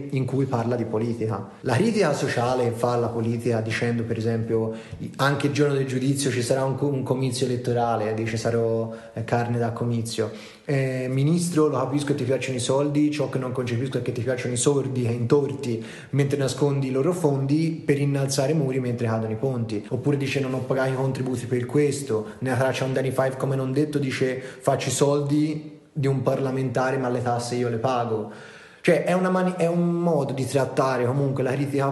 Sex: male